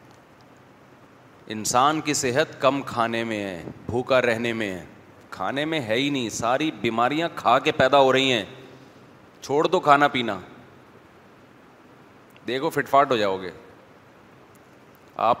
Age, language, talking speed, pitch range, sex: 30-49, Urdu, 135 wpm, 120-155 Hz, male